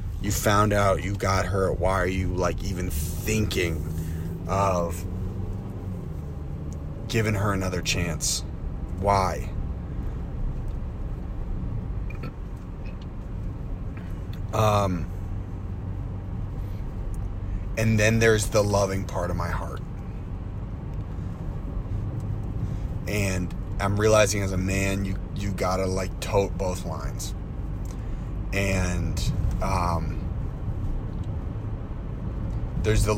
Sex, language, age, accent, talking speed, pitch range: male, English, 30-49, American, 80 wpm, 90-100 Hz